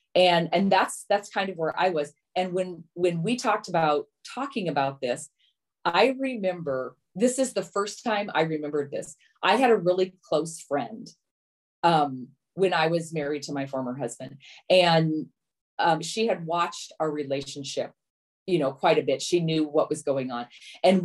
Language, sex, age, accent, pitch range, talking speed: English, female, 30-49, American, 145-200 Hz, 175 wpm